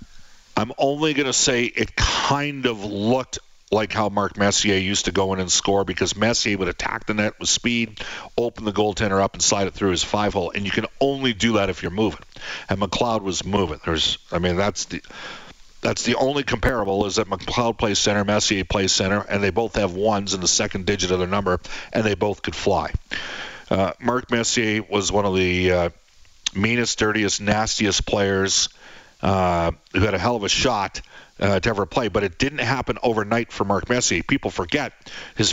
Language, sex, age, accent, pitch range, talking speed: English, male, 50-69, American, 100-125 Hz, 200 wpm